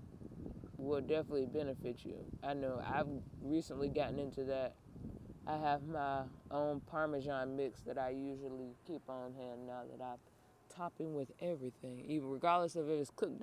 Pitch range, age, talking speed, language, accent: 130-155 Hz, 20-39, 155 wpm, English, American